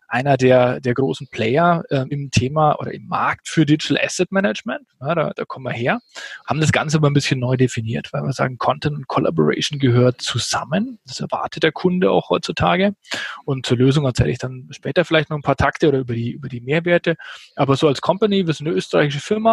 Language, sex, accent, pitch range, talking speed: German, male, German, 130-155 Hz, 215 wpm